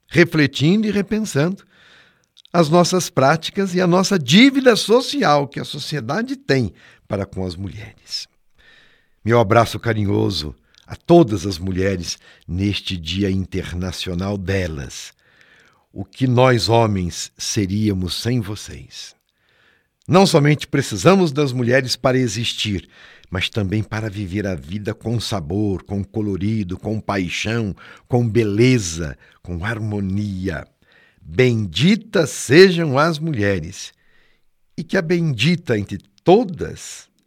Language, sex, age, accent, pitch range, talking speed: Portuguese, male, 60-79, Brazilian, 95-145 Hz, 115 wpm